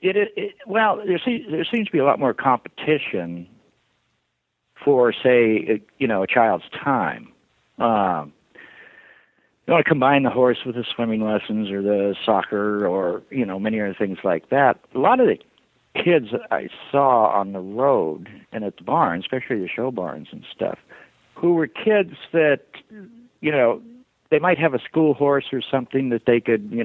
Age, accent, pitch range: 60-79, American, 105-165 Hz